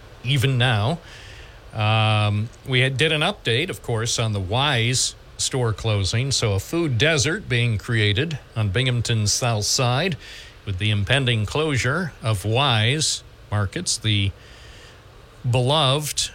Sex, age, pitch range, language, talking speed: male, 40-59, 105-125 Hz, English, 125 wpm